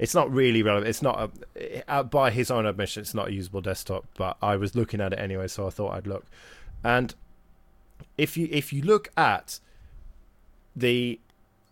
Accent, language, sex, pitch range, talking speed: British, English, male, 100-135 Hz, 185 wpm